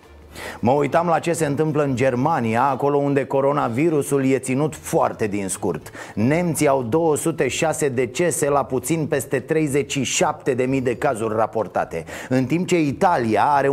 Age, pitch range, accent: 30-49, 115-155 Hz, native